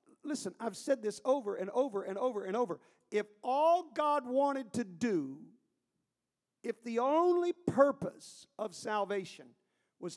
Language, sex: English, male